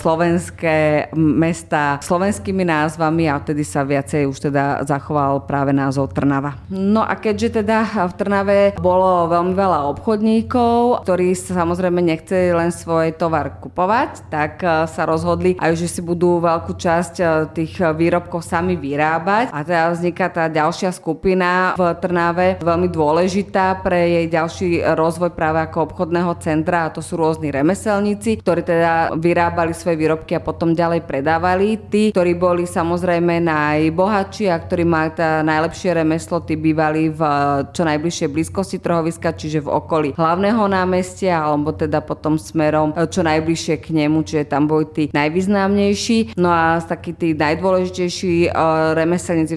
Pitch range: 155-180 Hz